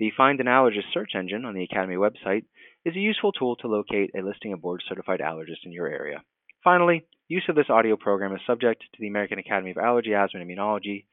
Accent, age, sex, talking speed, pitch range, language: American, 30-49, male, 220 wpm, 100-130 Hz, English